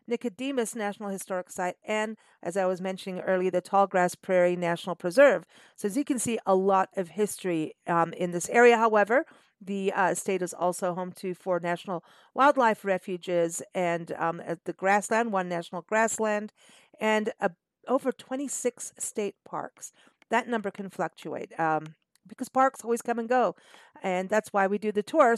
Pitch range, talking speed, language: 180-220 Hz, 165 wpm, English